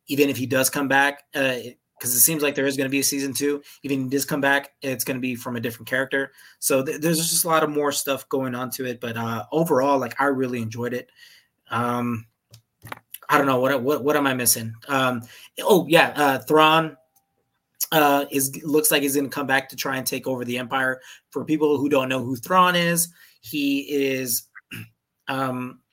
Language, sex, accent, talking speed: English, male, American, 225 wpm